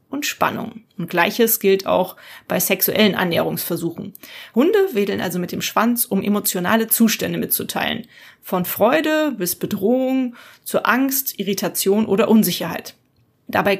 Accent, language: German, German